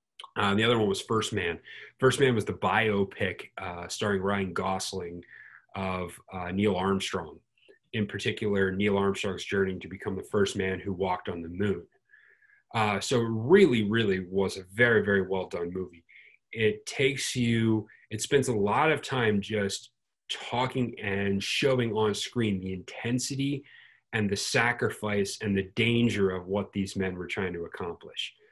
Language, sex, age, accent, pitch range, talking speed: English, male, 30-49, American, 95-110 Hz, 165 wpm